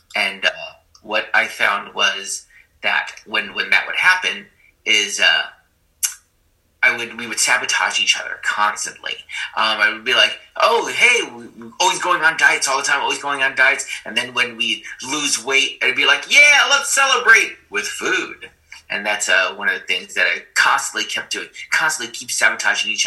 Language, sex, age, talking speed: English, male, 30-49, 185 wpm